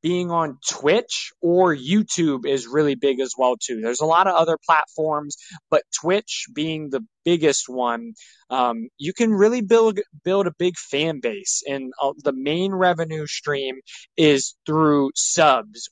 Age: 20-39